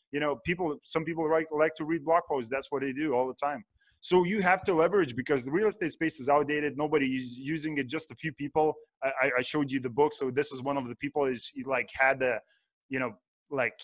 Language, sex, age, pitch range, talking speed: English, male, 20-39, 140-170 Hz, 255 wpm